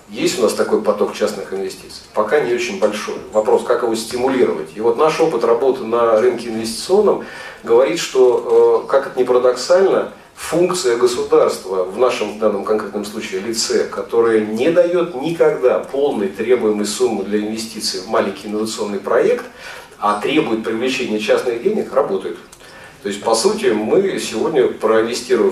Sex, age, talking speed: male, 40-59, 150 wpm